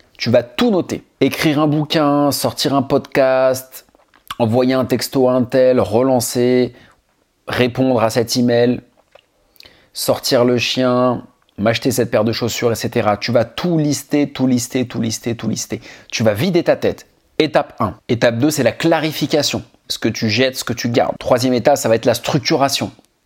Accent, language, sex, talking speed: French, French, male, 175 wpm